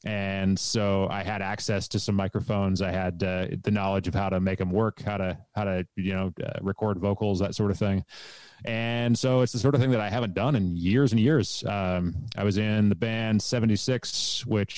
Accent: American